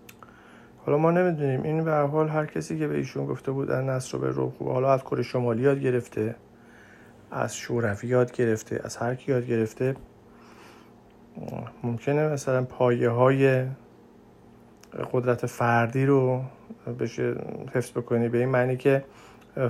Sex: male